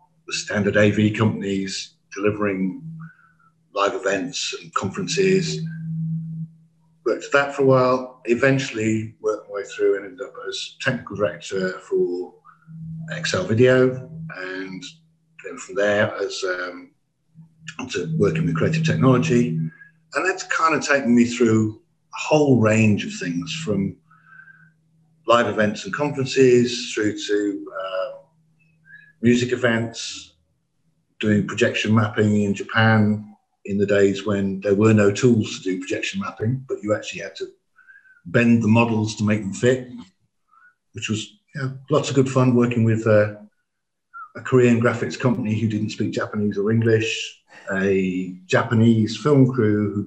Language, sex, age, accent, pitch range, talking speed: English, male, 50-69, British, 105-160 Hz, 135 wpm